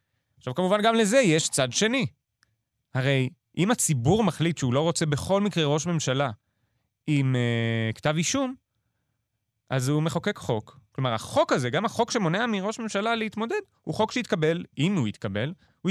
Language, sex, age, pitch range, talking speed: Hebrew, male, 30-49, 115-190 Hz, 160 wpm